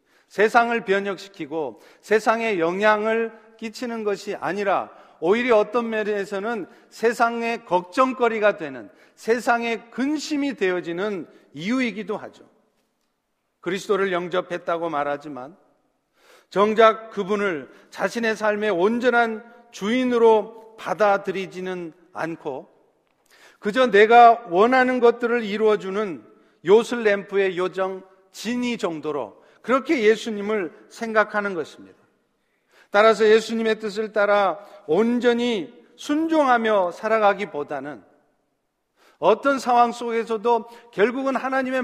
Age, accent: 40-59, native